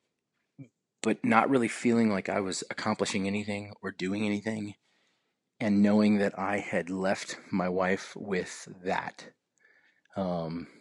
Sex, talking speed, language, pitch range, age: male, 130 wpm, English, 95-105 Hz, 30-49